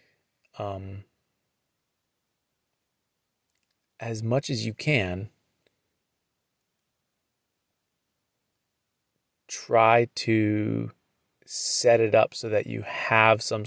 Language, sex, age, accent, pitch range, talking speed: English, male, 30-49, American, 100-115 Hz, 70 wpm